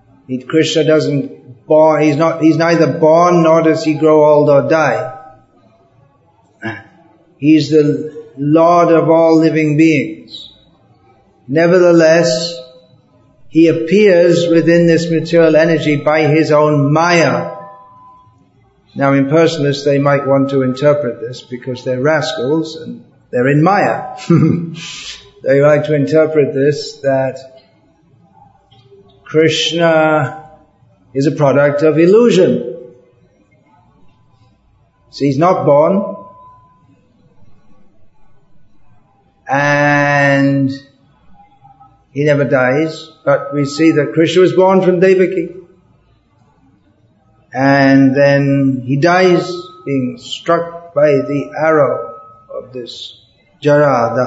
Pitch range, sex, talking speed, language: 135-160 Hz, male, 100 wpm, English